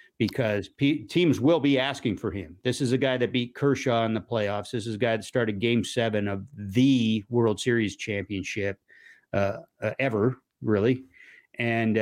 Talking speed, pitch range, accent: 170 wpm, 105-140 Hz, American